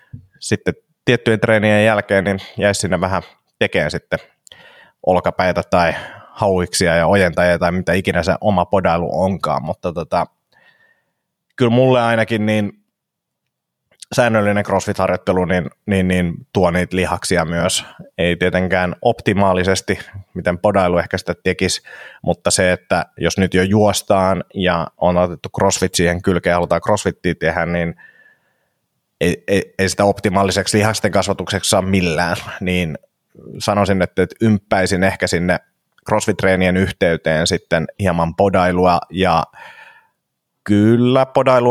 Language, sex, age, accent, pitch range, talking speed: Finnish, male, 30-49, native, 90-105 Hz, 120 wpm